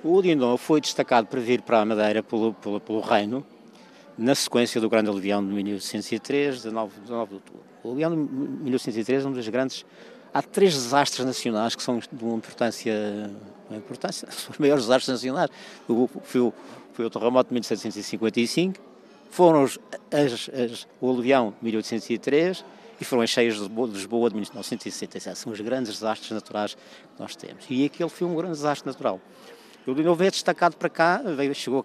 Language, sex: Portuguese, male